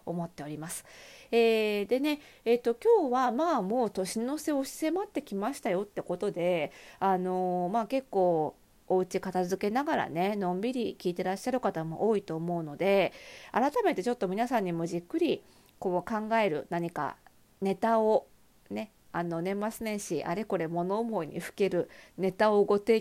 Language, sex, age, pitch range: Japanese, female, 40-59, 175-260 Hz